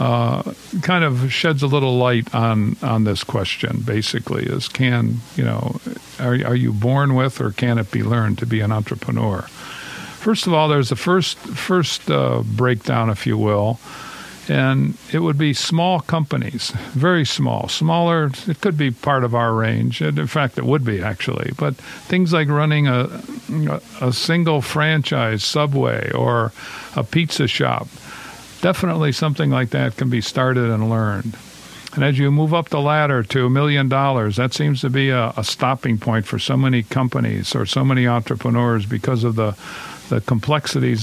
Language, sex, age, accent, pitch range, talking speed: English, male, 50-69, American, 115-145 Hz, 175 wpm